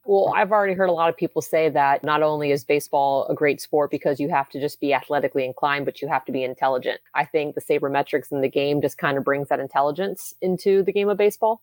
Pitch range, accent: 145-170 Hz, American